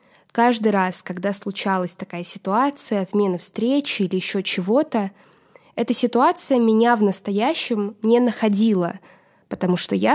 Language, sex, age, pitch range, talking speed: Russian, female, 20-39, 195-240 Hz, 125 wpm